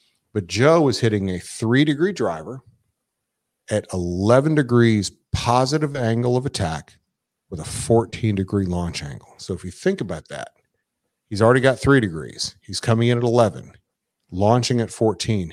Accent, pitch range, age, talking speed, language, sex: American, 95-125 Hz, 40-59, 145 wpm, English, male